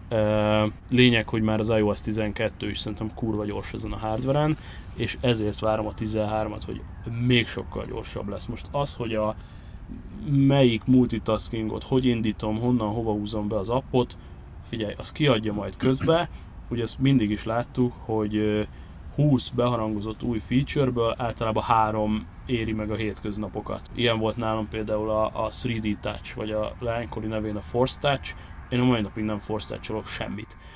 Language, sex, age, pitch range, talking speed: Hungarian, male, 20-39, 105-125 Hz, 155 wpm